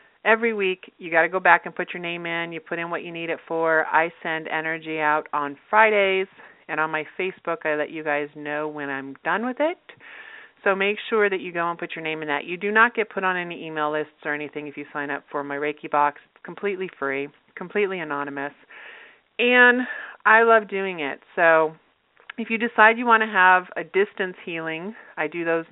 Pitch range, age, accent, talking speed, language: 155-215 Hz, 40-59, American, 220 wpm, English